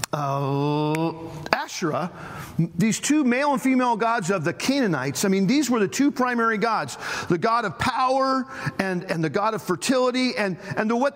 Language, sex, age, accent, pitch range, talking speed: English, male, 40-59, American, 180-295 Hz, 170 wpm